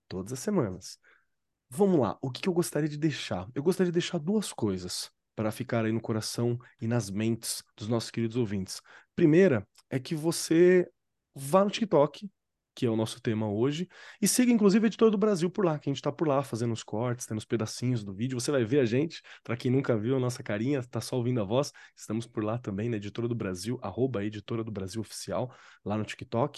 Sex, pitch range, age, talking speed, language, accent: male, 110-155 Hz, 20-39, 220 wpm, Portuguese, Brazilian